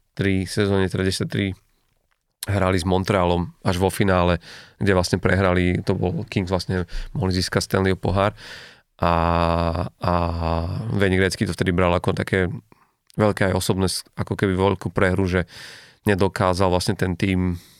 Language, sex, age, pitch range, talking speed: Slovak, male, 30-49, 95-105 Hz, 140 wpm